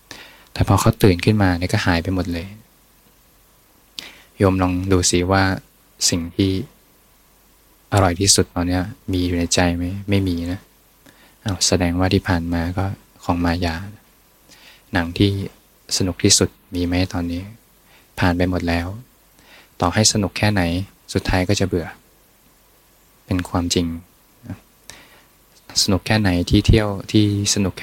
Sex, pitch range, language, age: male, 90-100 Hz, Thai, 20-39